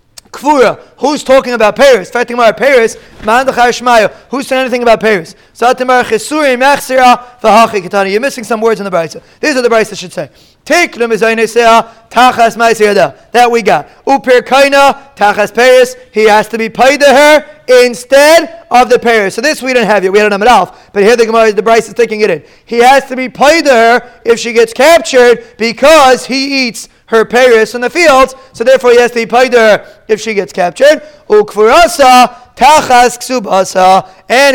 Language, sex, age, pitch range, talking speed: English, male, 30-49, 225-270 Hz, 165 wpm